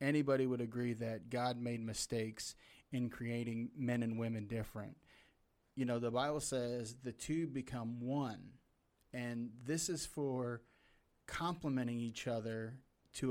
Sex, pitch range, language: male, 115-135 Hz, English